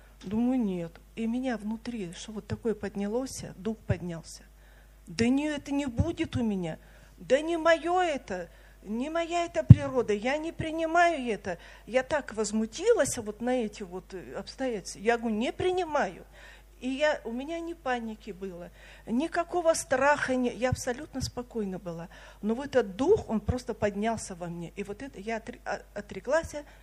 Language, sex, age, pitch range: Russian, female, 50-69, 200-275 Hz